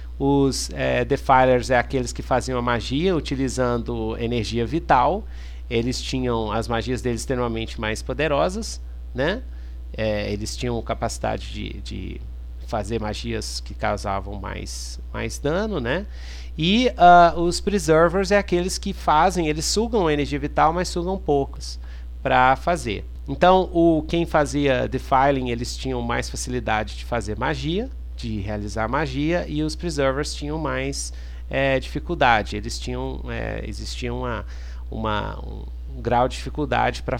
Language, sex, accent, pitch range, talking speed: Portuguese, male, Brazilian, 100-145 Hz, 125 wpm